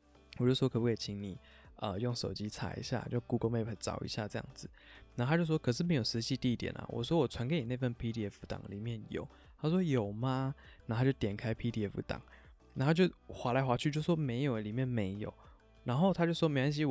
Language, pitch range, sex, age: Chinese, 105-130 Hz, male, 20-39